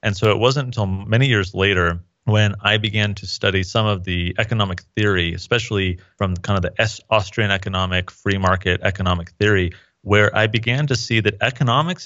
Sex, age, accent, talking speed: male, 30-49, American, 180 wpm